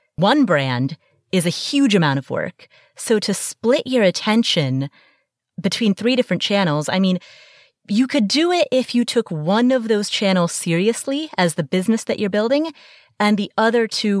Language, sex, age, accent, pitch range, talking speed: English, female, 30-49, American, 160-225 Hz, 175 wpm